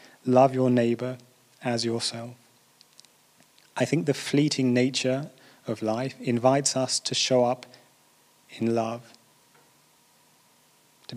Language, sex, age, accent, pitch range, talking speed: English, male, 30-49, British, 120-130 Hz, 105 wpm